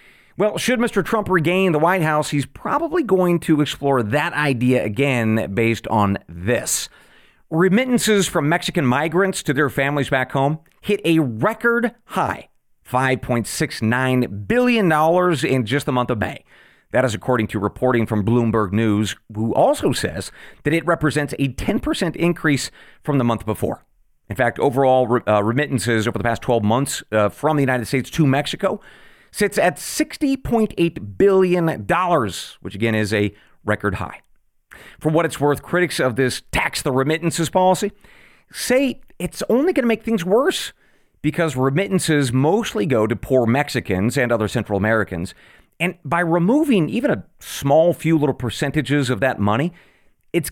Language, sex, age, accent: English, male, 40-59, American